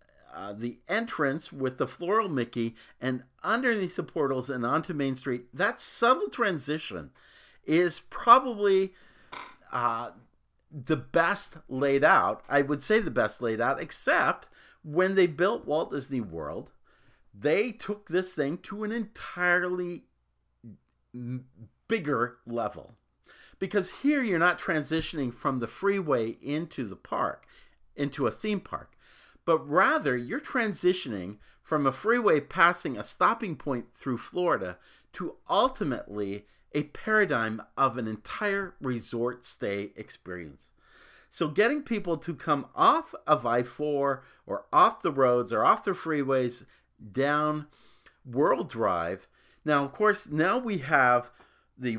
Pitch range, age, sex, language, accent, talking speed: 125-185 Hz, 50-69, male, English, American, 130 wpm